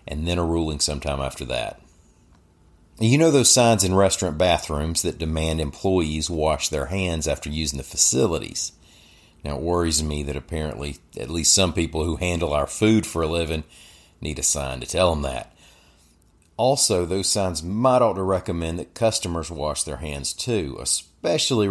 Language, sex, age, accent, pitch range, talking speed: English, male, 40-59, American, 75-95 Hz, 170 wpm